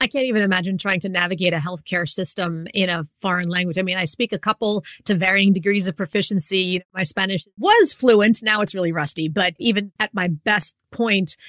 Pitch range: 180-215 Hz